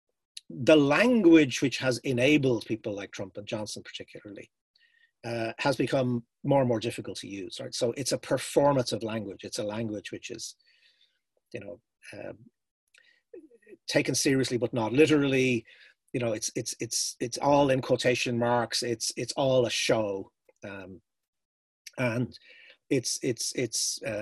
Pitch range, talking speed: 110-150 Hz, 150 wpm